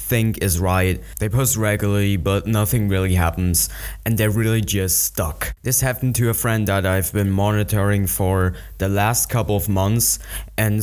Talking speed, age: 170 wpm, 20-39